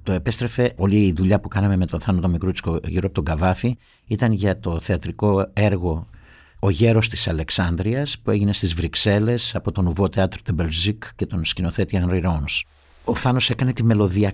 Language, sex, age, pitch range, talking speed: Greek, male, 50-69, 90-115 Hz, 180 wpm